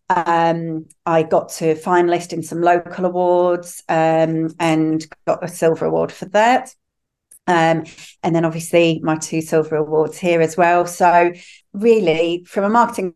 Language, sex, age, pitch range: English, female, 40-59, 160-185 Hz